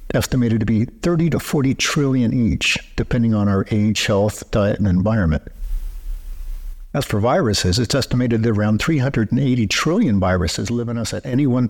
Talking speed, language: 165 wpm, English